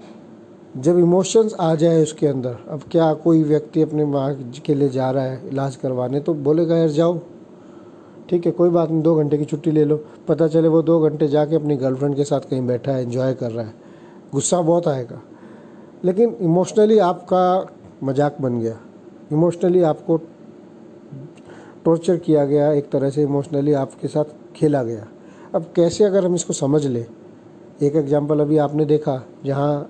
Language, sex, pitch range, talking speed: Hindi, male, 135-160 Hz, 175 wpm